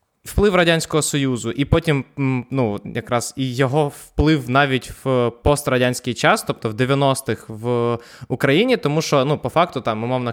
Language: Ukrainian